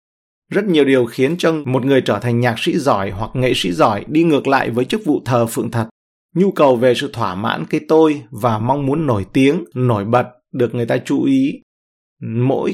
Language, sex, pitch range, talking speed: Vietnamese, male, 115-150 Hz, 215 wpm